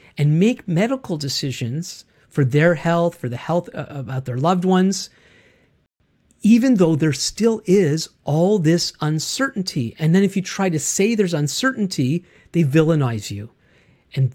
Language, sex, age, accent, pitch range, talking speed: English, male, 50-69, American, 135-175 Hz, 150 wpm